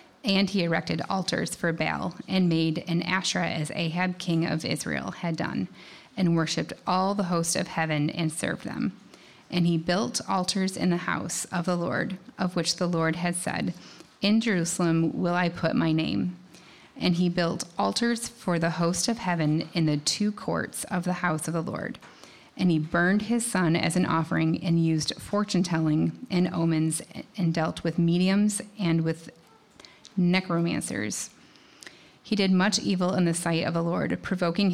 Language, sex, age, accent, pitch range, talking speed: English, female, 30-49, American, 160-185 Hz, 175 wpm